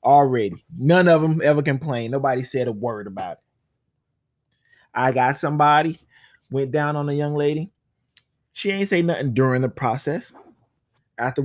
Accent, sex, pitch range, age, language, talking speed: American, male, 130-165 Hz, 20-39, English, 150 wpm